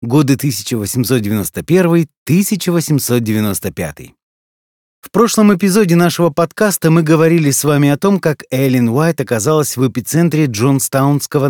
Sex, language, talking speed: male, Russian, 105 wpm